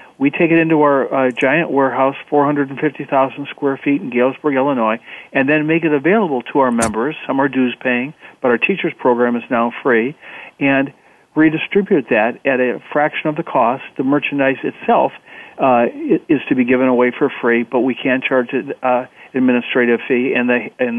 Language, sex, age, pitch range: English, male, 50-69, 130-155 Hz